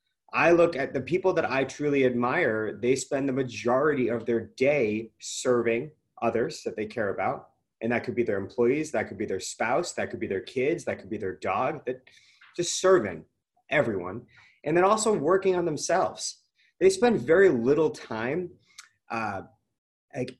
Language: English